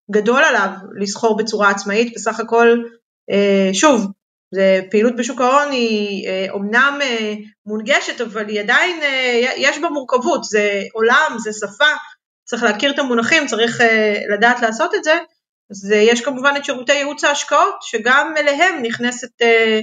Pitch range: 215-285 Hz